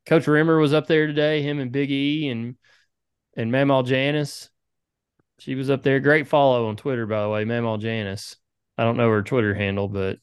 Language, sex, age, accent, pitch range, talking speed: English, male, 30-49, American, 130-155 Hz, 200 wpm